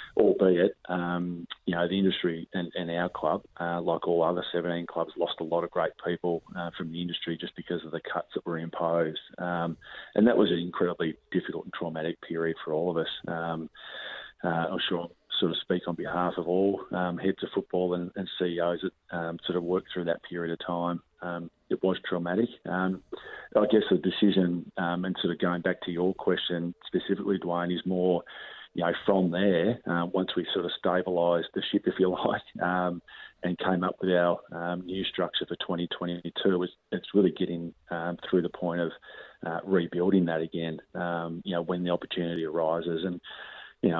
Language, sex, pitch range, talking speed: English, male, 85-90 Hz, 200 wpm